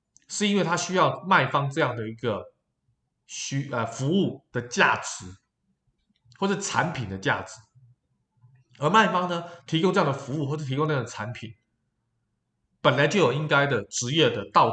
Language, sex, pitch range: Chinese, male, 115-180 Hz